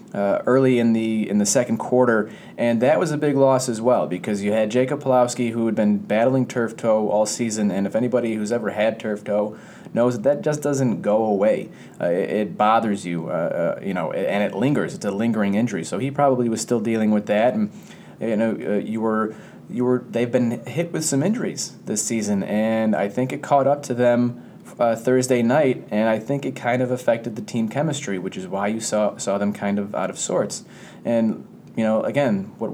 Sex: male